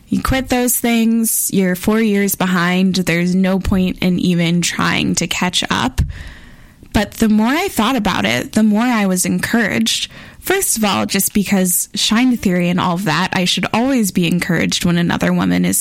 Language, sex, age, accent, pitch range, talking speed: English, female, 20-39, American, 180-220 Hz, 185 wpm